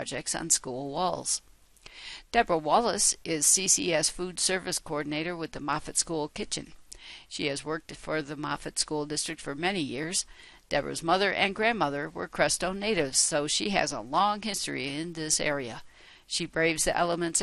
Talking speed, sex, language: 160 wpm, female, English